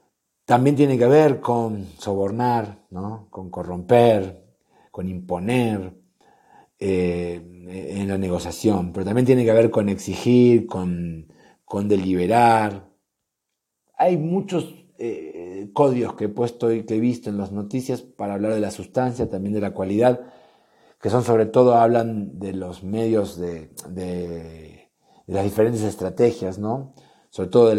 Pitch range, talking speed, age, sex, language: 100-125 Hz, 145 wpm, 40-59, male, Spanish